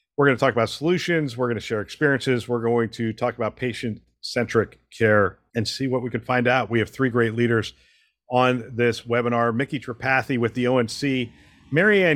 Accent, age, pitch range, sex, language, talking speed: American, 50-69, 110-130 Hz, male, English, 185 wpm